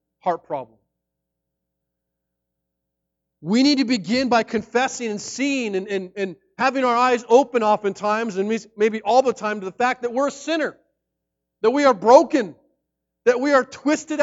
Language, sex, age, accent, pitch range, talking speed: English, male, 40-59, American, 200-270 Hz, 160 wpm